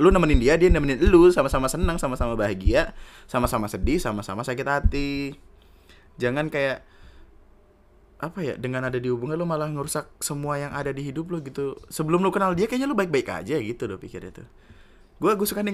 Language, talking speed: Indonesian, 185 wpm